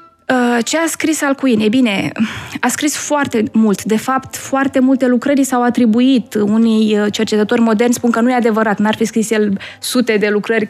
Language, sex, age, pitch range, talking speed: Romanian, female, 20-39, 215-255 Hz, 180 wpm